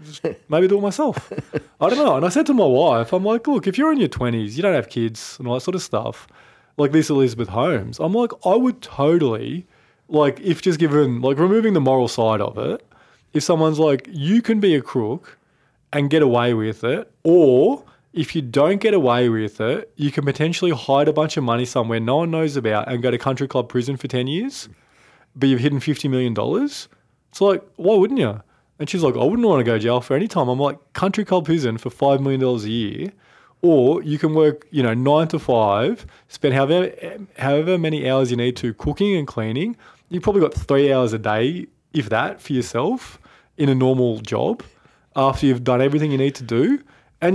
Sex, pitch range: male, 125-180 Hz